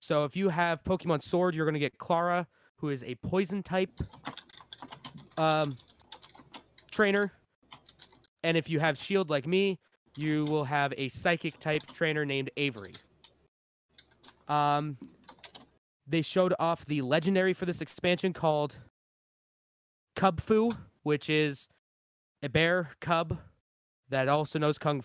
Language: English